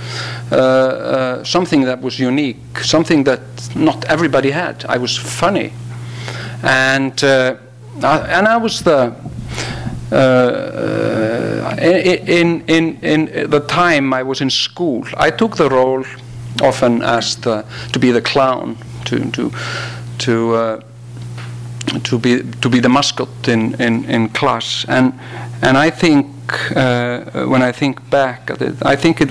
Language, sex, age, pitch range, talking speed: English, male, 50-69, 120-135 Hz, 145 wpm